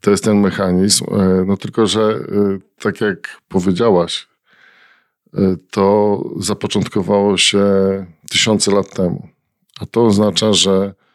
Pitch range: 95-105 Hz